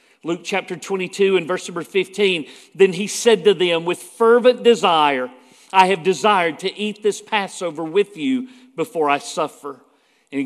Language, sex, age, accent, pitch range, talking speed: English, male, 50-69, American, 180-235 Hz, 160 wpm